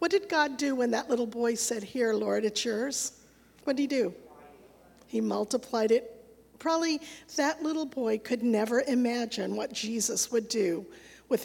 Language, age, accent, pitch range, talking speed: English, 50-69, American, 235-300 Hz, 170 wpm